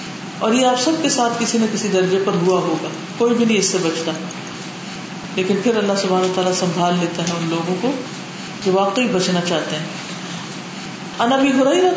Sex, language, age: female, Urdu, 40-59